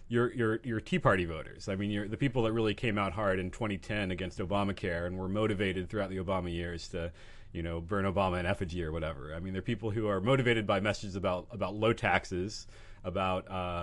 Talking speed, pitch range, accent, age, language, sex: 210 wpm, 95-115 Hz, American, 30-49, English, male